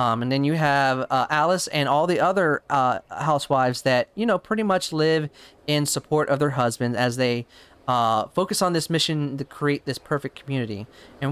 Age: 30-49